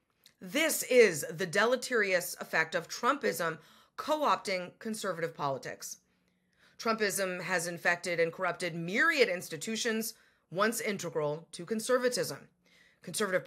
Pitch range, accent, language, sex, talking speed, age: 165-240 Hz, American, English, female, 100 wpm, 30-49